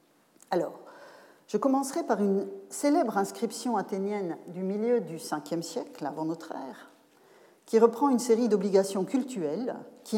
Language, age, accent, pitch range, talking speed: French, 40-59, French, 170-265 Hz, 135 wpm